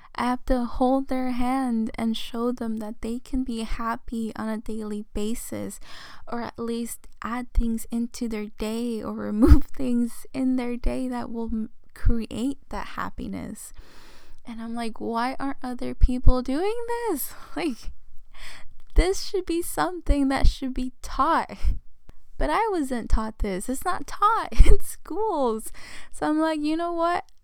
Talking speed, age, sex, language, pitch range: 155 wpm, 10-29, female, English, 225-265 Hz